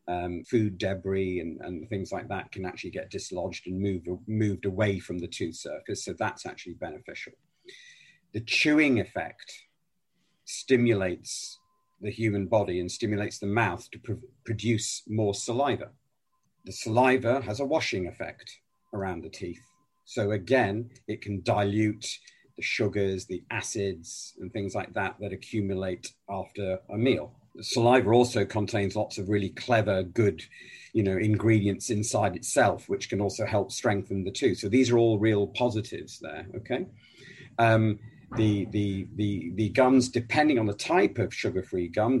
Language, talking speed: English, 150 wpm